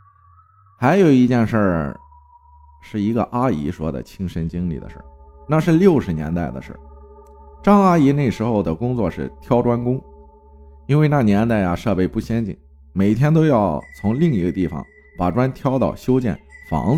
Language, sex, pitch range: Chinese, male, 90-145 Hz